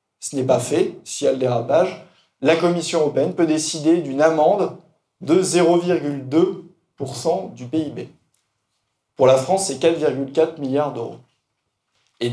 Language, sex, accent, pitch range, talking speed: French, male, French, 125-165 Hz, 135 wpm